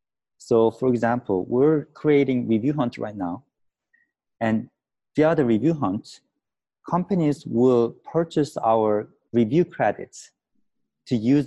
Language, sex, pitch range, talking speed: English, male, 110-140 Hz, 120 wpm